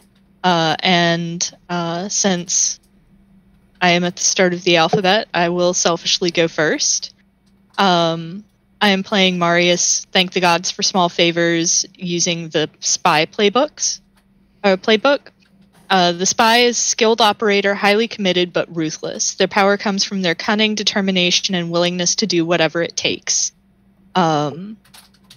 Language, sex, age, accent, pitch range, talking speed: English, female, 20-39, American, 170-195 Hz, 140 wpm